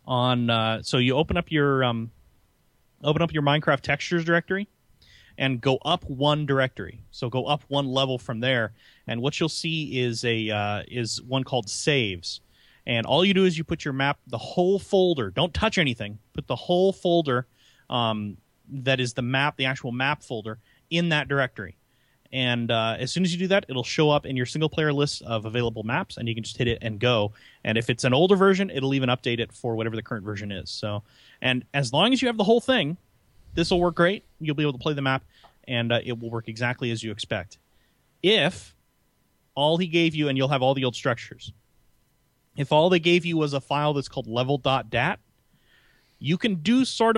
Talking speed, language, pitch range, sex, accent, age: 210 wpm, English, 115-155 Hz, male, American, 30-49